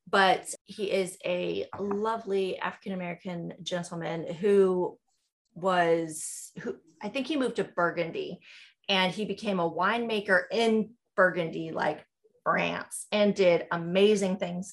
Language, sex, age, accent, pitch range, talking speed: English, female, 30-49, American, 170-205 Hz, 120 wpm